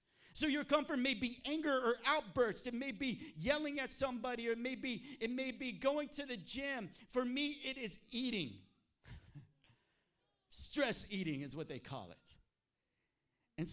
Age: 40-59